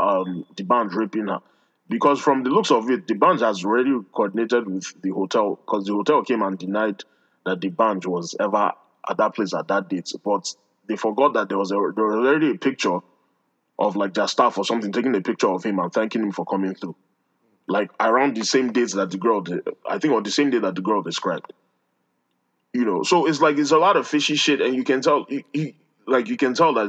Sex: male